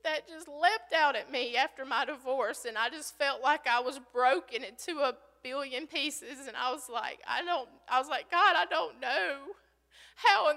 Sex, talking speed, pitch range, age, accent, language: female, 205 wpm, 240-315 Hz, 30-49, American, English